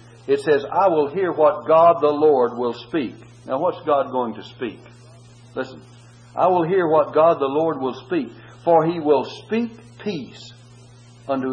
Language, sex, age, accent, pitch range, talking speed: English, male, 60-79, American, 120-155 Hz, 170 wpm